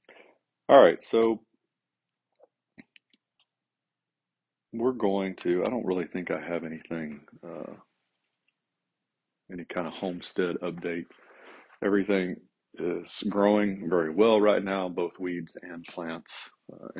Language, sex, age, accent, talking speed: English, male, 40-59, American, 110 wpm